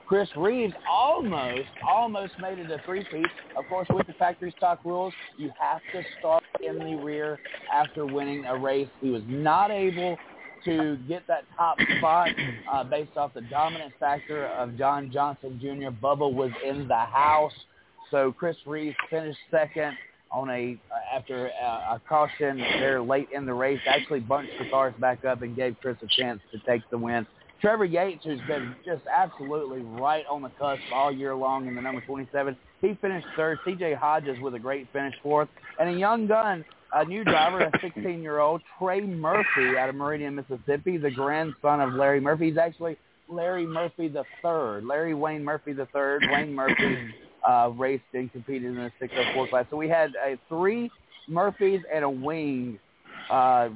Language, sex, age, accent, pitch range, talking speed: English, male, 30-49, American, 130-160 Hz, 180 wpm